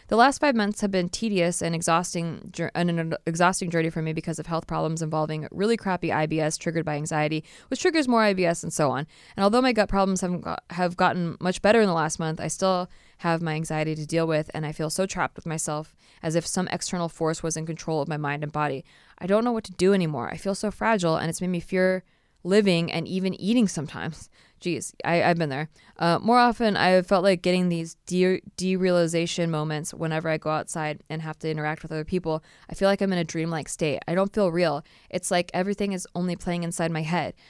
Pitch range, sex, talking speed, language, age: 160-190 Hz, female, 225 wpm, English, 20-39